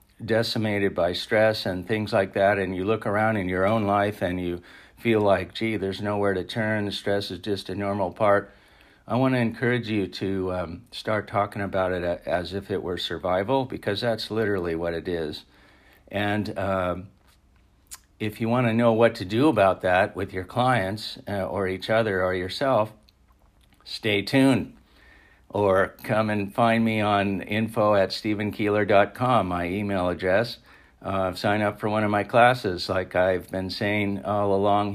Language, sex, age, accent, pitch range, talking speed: English, male, 50-69, American, 95-110 Hz, 170 wpm